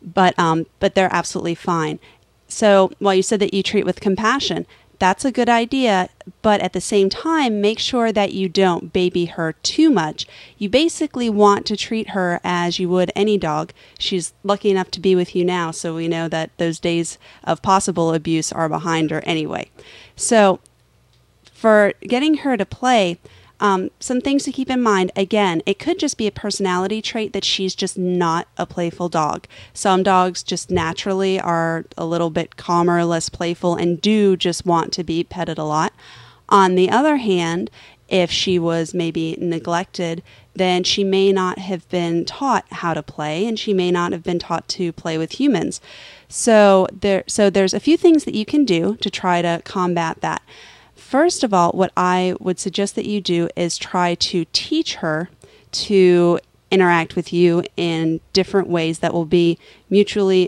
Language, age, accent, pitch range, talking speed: English, 30-49, American, 170-205 Hz, 185 wpm